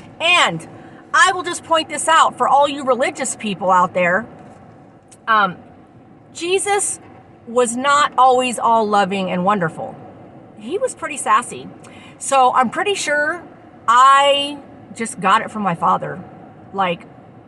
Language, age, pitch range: English, 40-59, 220-280 Hz